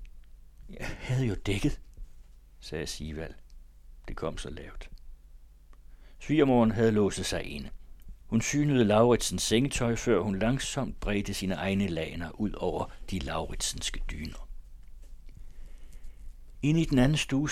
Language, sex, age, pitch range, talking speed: Danish, male, 60-79, 80-110 Hz, 125 wpm